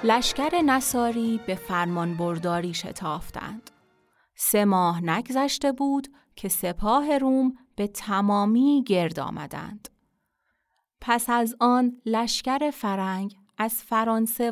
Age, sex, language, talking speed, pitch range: 30-49, female, Persian, 100 wpm, 185-245 Hz